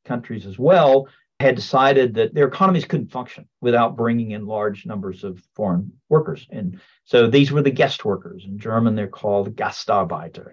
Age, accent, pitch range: 50-69, American, 120-160 Hz